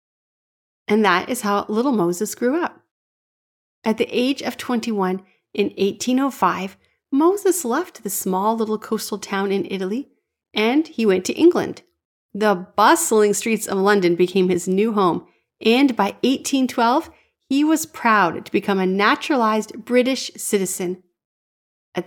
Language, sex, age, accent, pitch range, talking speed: English, female, 30-49, American, 195-255 Hz, 140 wpm